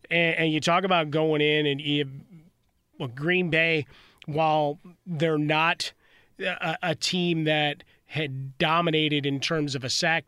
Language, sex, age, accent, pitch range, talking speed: English, male, 30-49, American, 145-170 Hz, 135 wpm